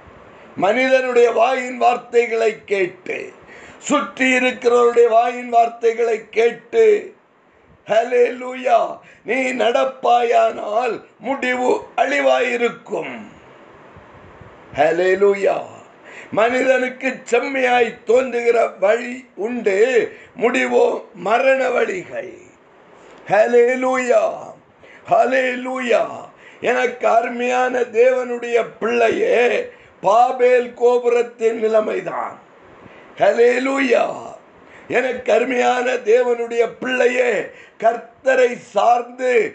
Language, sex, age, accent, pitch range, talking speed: Tamil, male, 50-69, native, 235-265 Hz, 45 wpm